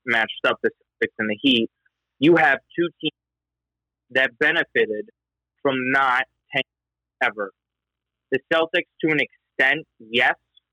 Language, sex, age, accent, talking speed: English, male, 20-39, American, 130 wpm